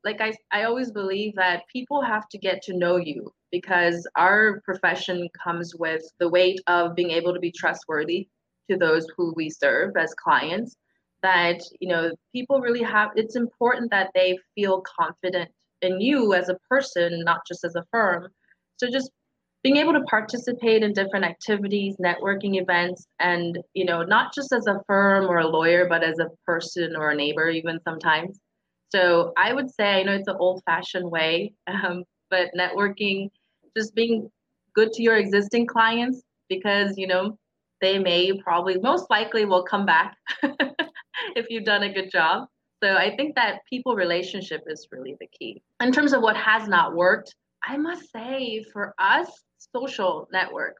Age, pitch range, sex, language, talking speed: 30-49, 175-225 Hz, female, English, 175 wpm